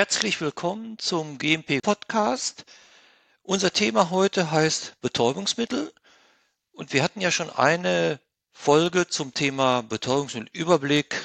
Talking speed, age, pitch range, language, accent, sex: 105 wpm, 50-69, 125-165 Hz, German, German, male